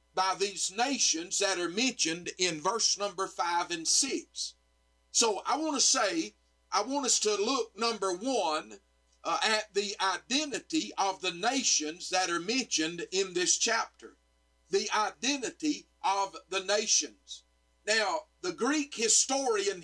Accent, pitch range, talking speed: American, 180-285 Hz, 135 wpm